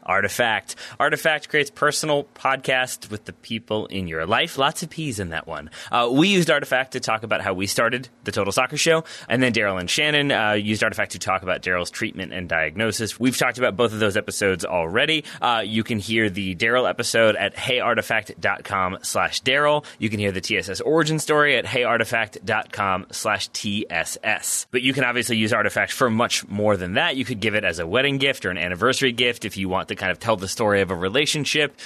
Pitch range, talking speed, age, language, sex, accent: 105-135 Hz, 205 wpm, 30-49, English, male, American